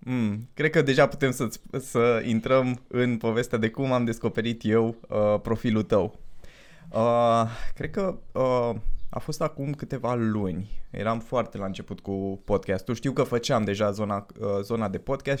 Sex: male